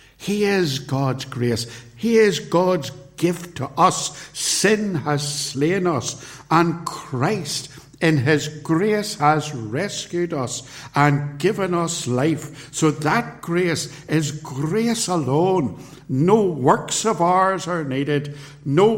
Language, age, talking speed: English, 60-79, 125 wpm